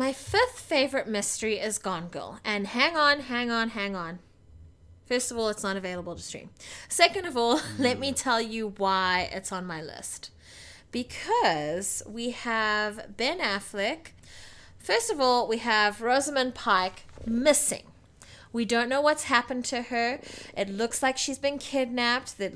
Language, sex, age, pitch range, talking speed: English, female, 30-49, 200-260 Hz, 160 wpm